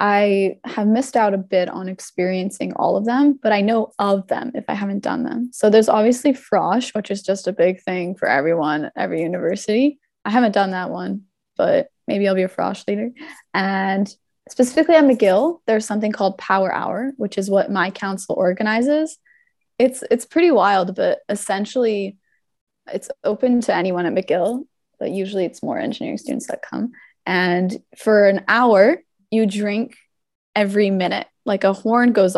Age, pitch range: 20-39, 190-250 Hz